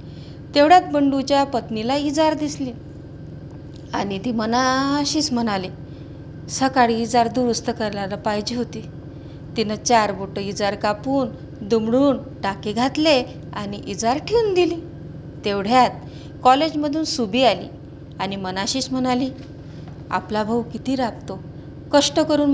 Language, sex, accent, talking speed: Marathi, female, native, 105 wpm